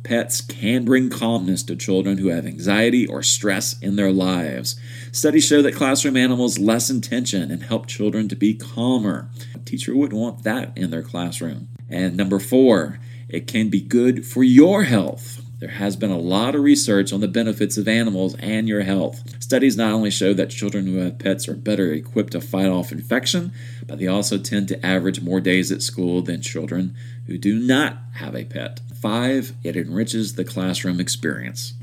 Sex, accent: male, American